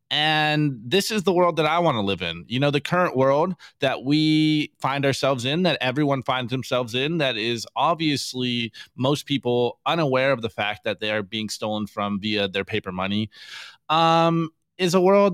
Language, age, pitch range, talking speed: English, 20-39, 130-170 Hz, 190 wpm